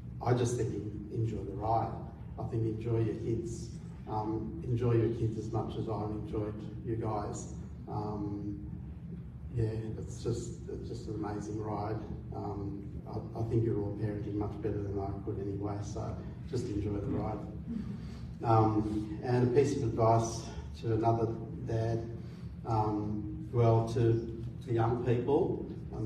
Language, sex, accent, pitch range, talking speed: German, male, Australian, 105-115 Hz, 145 wpm